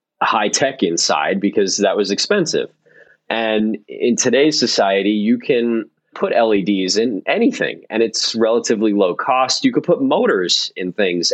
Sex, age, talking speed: male, 30-49, 150 wpm